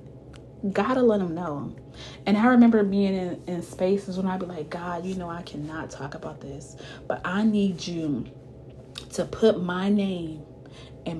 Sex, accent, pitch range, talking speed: female, American, 155-205 Hz, 175 wpm